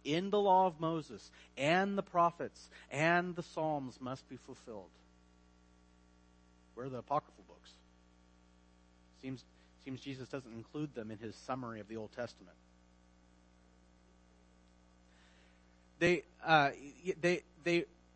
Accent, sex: American, male